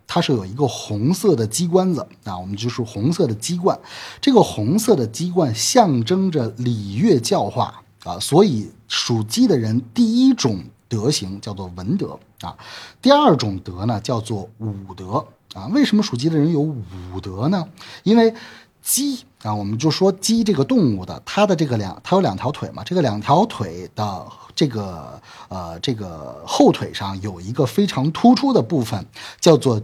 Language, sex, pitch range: Chinese, male, 105-175 Hz